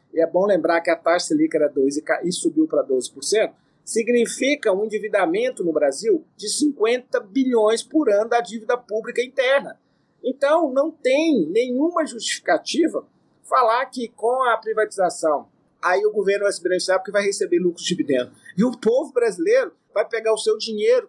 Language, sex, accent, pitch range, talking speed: Portuguese, male, Brazilian, 205-315 Hz, 170 wpm